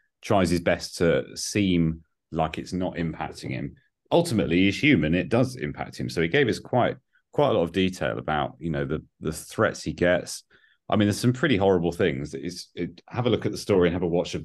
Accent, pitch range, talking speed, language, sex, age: British, 85-105 Hz, 230 wpm, English, male, 30-49